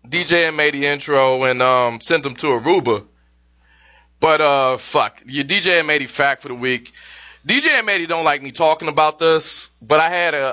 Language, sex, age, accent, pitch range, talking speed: English, male, 20-39, American, 120-170 Hz, 195 wpm